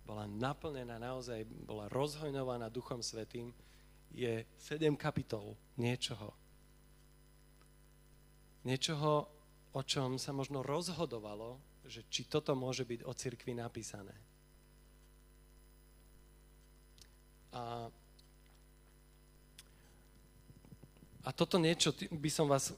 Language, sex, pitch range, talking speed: Slovak, male, 120-145 Hz, 85 wpm